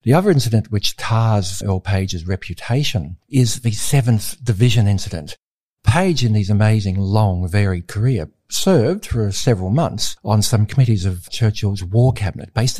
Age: 50-69